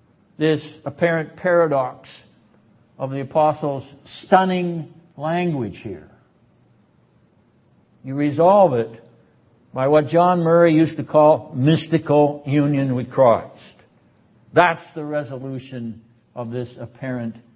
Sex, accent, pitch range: male, American, 110-140 Hz